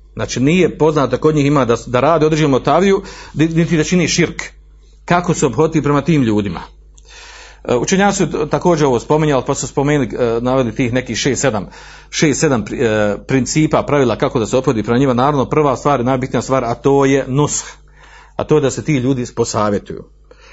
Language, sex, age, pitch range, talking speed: Croatian, male, 50-69, 125-155 Hz, 180 wpm